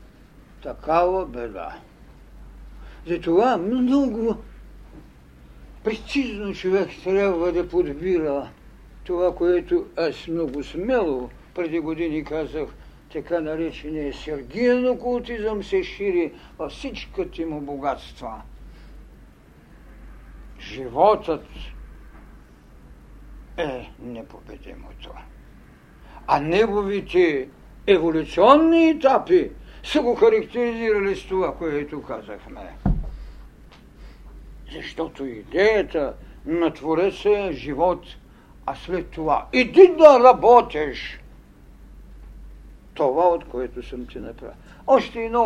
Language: Bulgarian